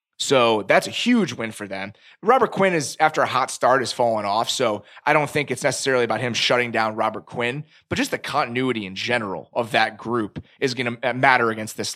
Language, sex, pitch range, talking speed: English, male, 120-165 Hz, 220 wpm